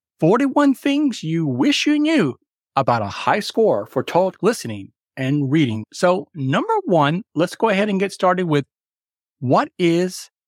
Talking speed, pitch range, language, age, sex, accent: 155 wpm, 135-215 Hz, English, 50-69, male, American